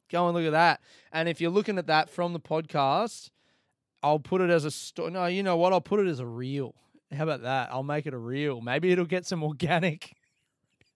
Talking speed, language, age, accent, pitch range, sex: 235 wpm, English, 20-39, Australian, 125-165 Hz, male